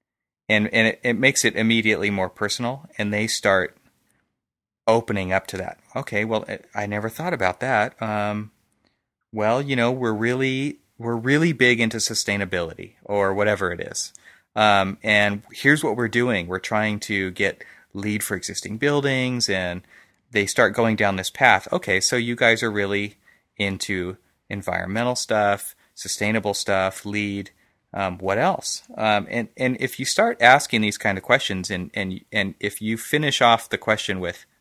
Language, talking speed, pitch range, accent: English, 165 wpm, 100-120 Hz, American